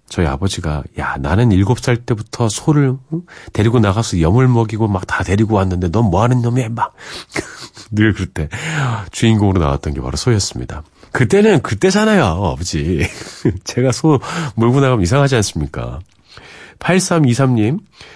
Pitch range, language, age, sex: 95-145 Hz, Korean, 40-59, male